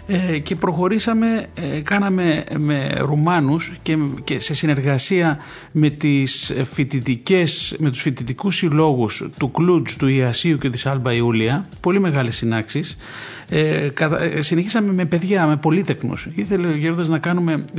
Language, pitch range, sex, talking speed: Greek, 140-175 Hz, male, 135 wpm